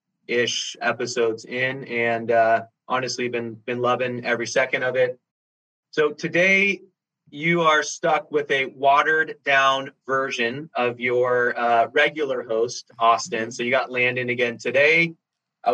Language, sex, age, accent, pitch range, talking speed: English, male, 30-49, American, 115-135 Hz, 135 wpm